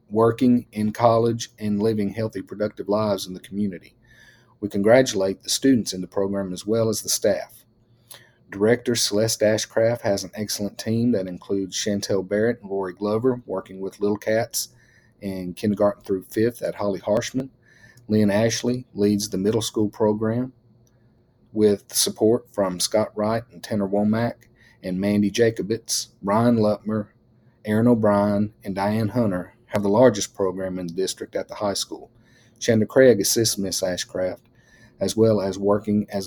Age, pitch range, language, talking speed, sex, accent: 40-59, 100-115 Hz, English, 155 wpm, male, American